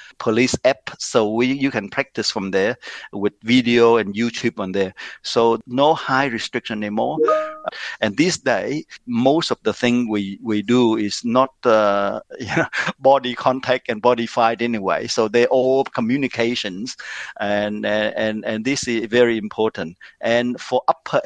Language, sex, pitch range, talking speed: Filipino, male, 115-135 Hz, 155 wpm